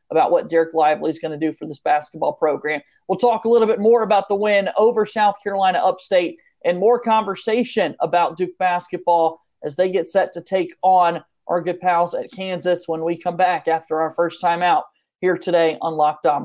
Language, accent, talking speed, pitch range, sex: English, American, 210 wpm, 175-225 Hz, male